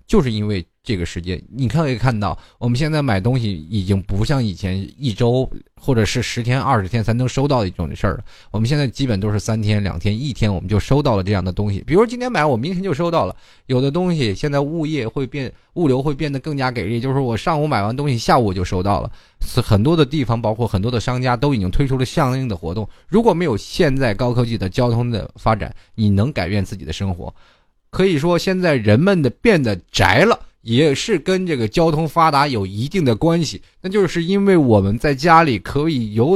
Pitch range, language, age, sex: 105-160 Hz, Chinese, 20-39, male